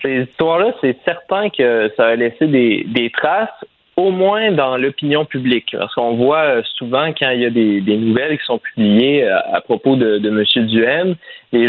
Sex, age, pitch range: male, 20-39, 115-150 Hz